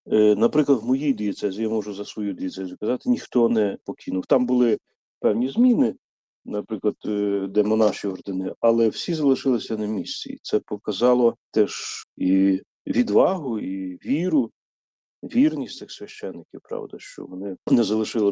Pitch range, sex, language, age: 105-125 Hz, male, Ukrainian, 40-59